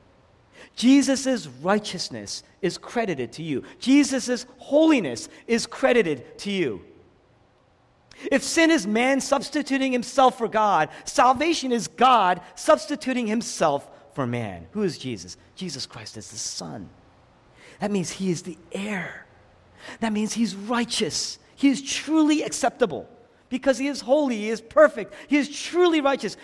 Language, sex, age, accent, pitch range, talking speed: English, male, 40-59, American, 205-290 Hz, 135 wpm